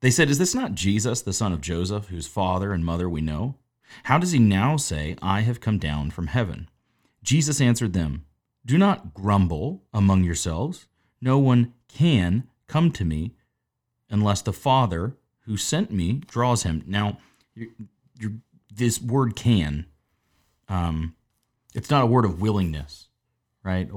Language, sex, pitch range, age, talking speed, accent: English, male, 90-120 Hz, 30-49, 160 wpm, American